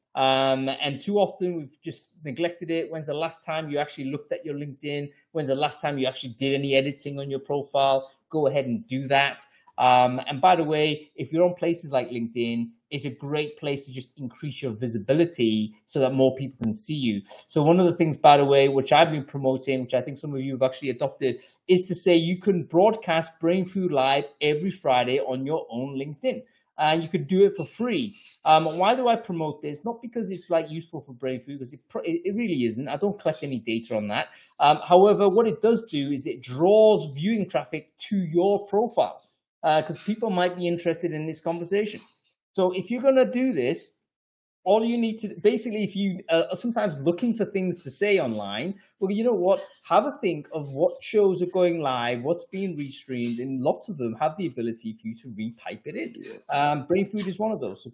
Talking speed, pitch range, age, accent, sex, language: 220 wpm, 135-185 Hz, 20-39, British, male, English